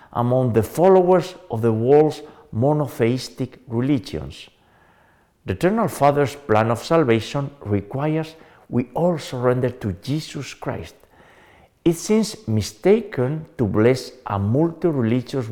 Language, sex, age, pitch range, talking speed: English, male, 50-69, 100-140 Hz, 110 wpm